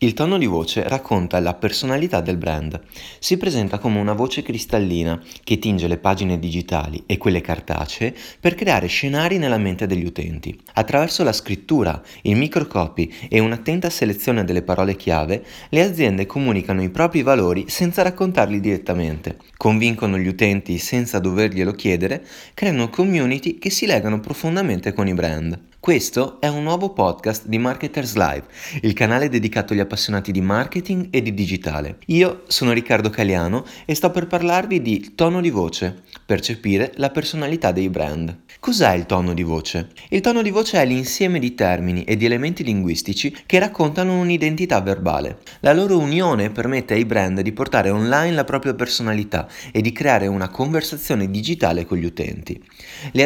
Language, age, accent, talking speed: Italian, 20-39, native, 160 wpm